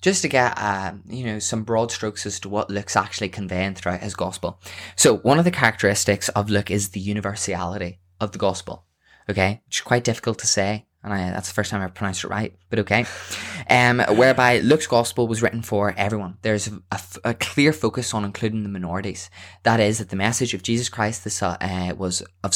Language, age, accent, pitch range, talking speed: English, 20-39, Irish, 95-110 Hz, 205 wpm